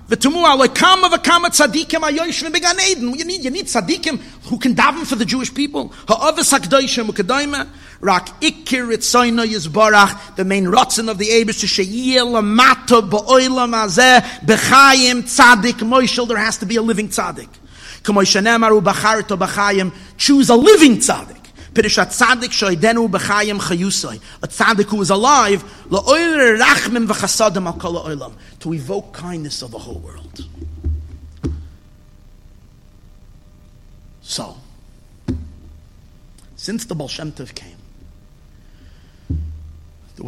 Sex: male